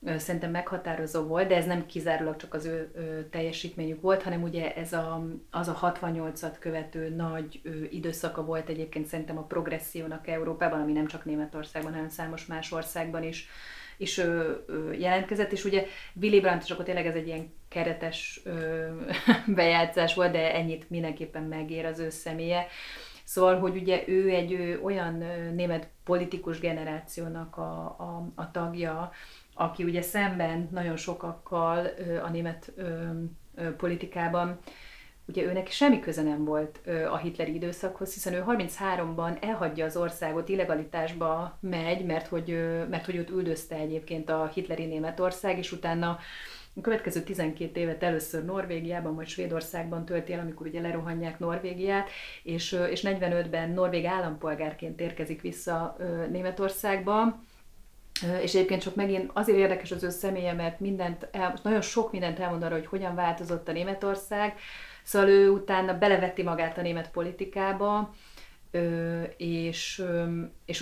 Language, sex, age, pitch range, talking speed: Hungarian, female, 30-49, 165-185 Hz, 135 wpm